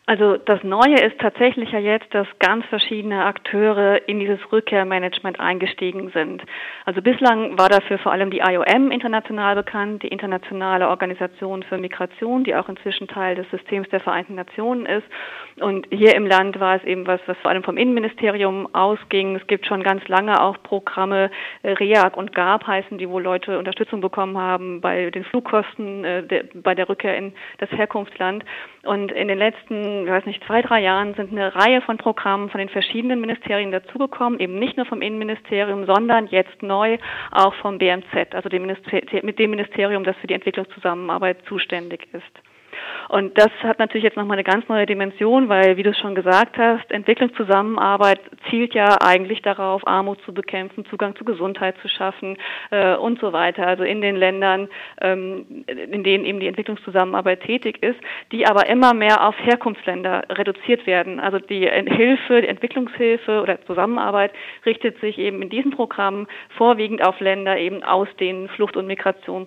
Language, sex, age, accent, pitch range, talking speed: German, female, 30-49, German, 190-220 Hz, 170 wpm